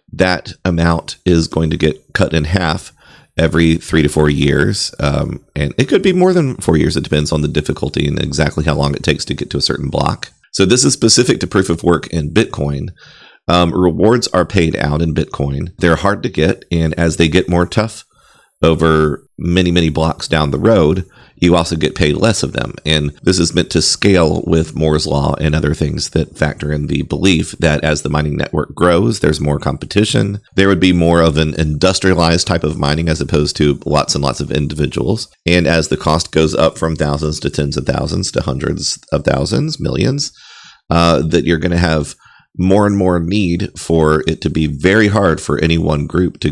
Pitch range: 75-90 Hz